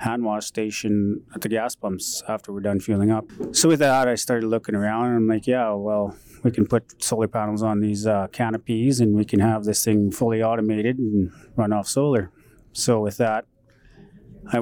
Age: 20-39